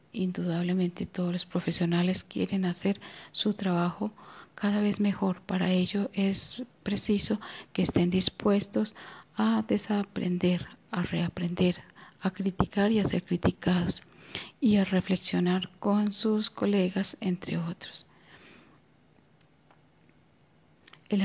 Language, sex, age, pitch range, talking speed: Spanish, female, 40-59, 180-205 Hz, 105 wpm